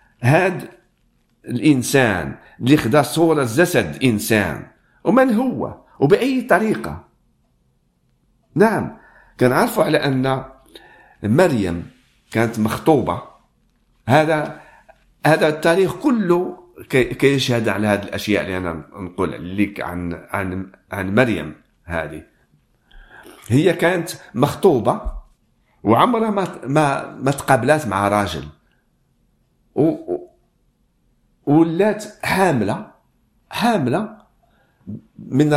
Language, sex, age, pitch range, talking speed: Swedish, male, 50-69, 115-175 Hz, 80 wpm